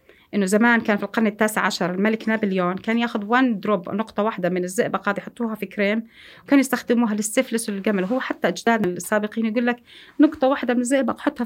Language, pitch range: Arabic, 195-245 Hz